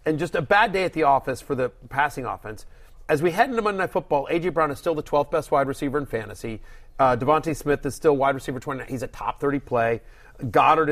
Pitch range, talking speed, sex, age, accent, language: 130-170 Hz, 240 wpm, male, 30-49, American, English